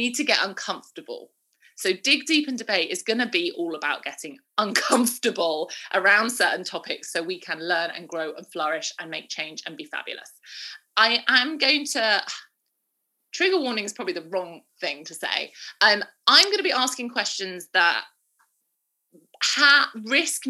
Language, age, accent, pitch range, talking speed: English, 30-49, British, 185-265 Hz, 165 wpm